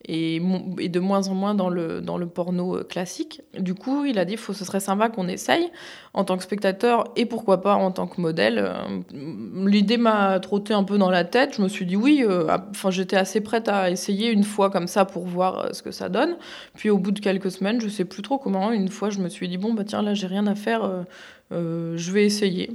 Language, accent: French, French